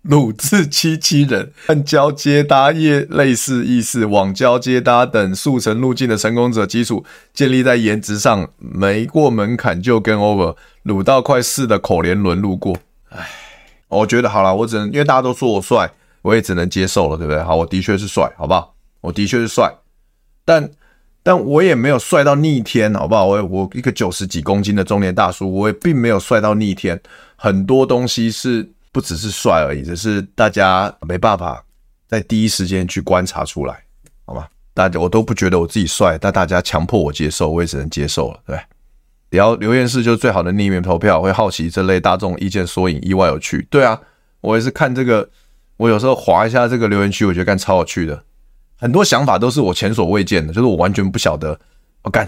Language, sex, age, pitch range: Chinese, male, 20-39, 90-120 Hz